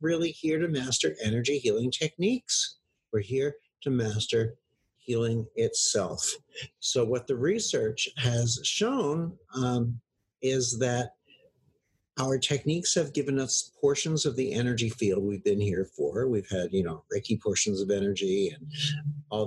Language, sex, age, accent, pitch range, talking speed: English, male, 50-69, American, 115-150 Hz, 140 wpm